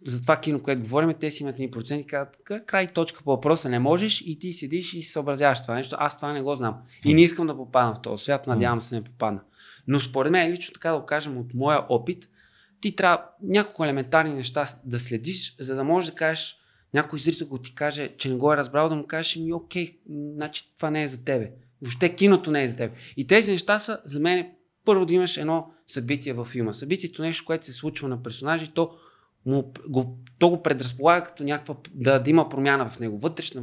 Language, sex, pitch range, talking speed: Bulgarian, male, 130-165 Hz, 230 wpm